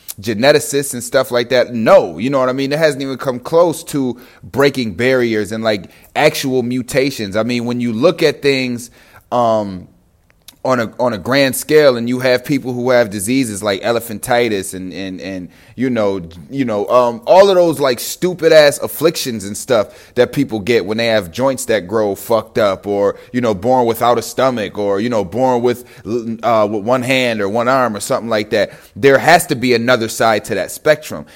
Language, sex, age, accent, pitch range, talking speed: English, male, 30-49, American, 110-140 Hz, 205 wpm